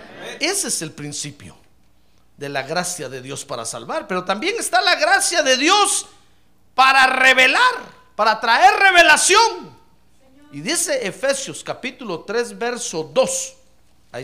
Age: 50-69